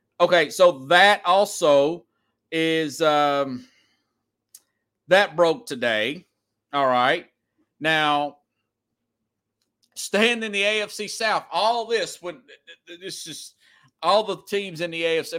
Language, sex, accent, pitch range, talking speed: English, male, American, 140-205 Hz, 115 wpm